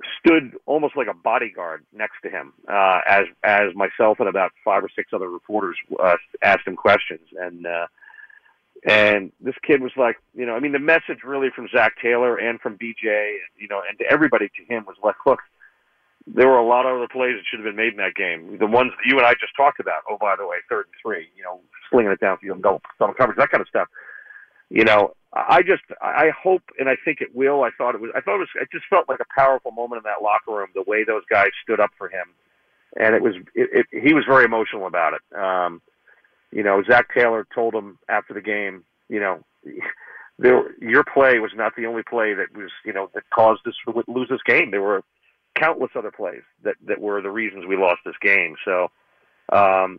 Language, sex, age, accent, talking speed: English, male, 40-59, American, 230 wpm